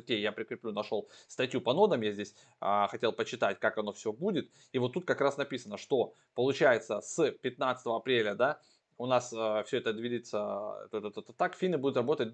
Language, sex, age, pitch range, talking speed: Russian, male, 20-39, 115-145 Hz, 170 wpm